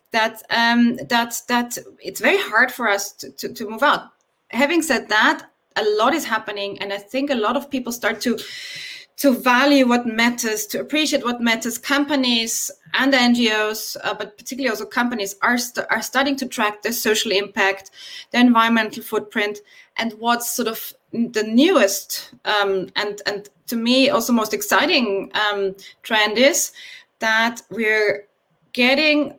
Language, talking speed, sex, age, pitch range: English, 160 wpm, female, 20-39, 210-275 Hz